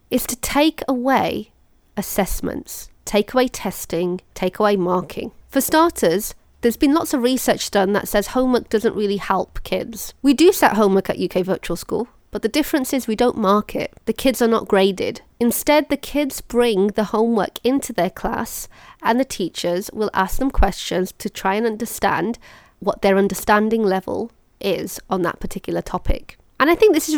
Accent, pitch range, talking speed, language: British, 195-255 Hz, 180 wpm, English